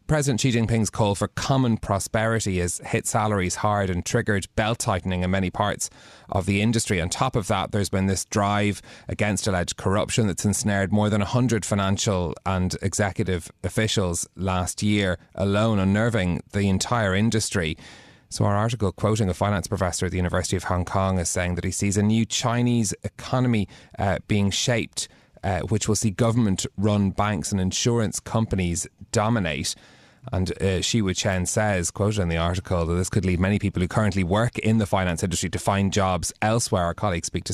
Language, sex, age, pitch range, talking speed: English, male, 30-49, 90-110 Hz, 180 wpm